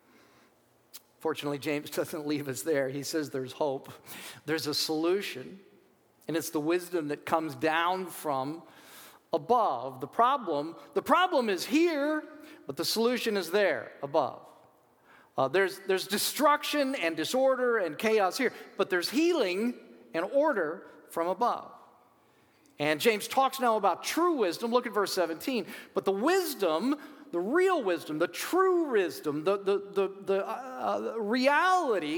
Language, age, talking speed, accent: English, 40-59, 140 wpm, American